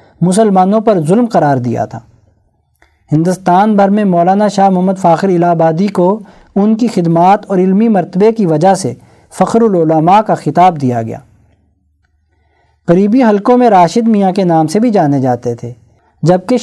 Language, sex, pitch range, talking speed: Urdu, male, 155-210 Hz, 160 wpm